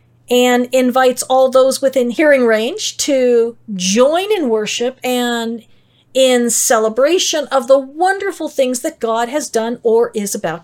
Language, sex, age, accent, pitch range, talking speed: English, female, 50-69, American, 230-340 Hz, 140 wpm